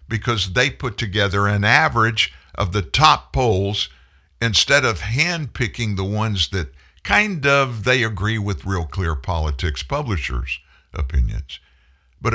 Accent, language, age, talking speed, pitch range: American, English, 60-79, 130 wpm, 70-115 Hz